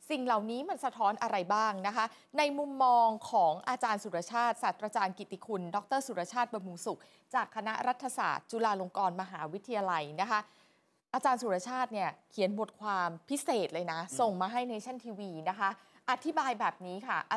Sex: female